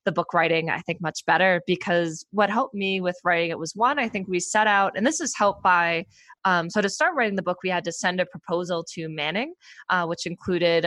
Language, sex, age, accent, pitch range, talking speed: English, female, 20-39, American, 170-205 Hz, 245 wpm